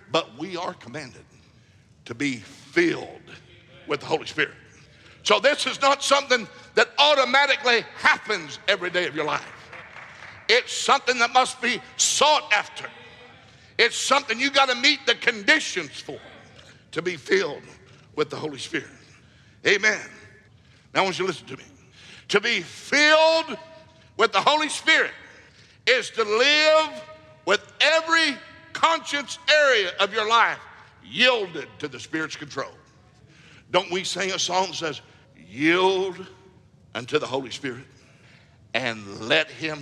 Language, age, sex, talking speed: English, 60-79, male, 140 wpm